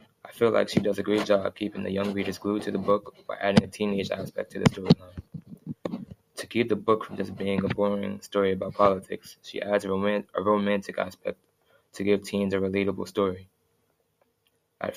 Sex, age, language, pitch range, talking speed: male, 20-39, English, 100-105 Hz, 195 wpm